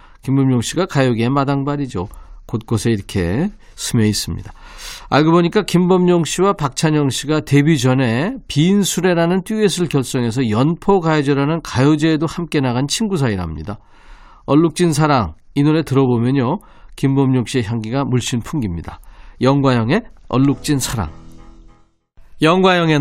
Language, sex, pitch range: Korean, male, 115-165 Hz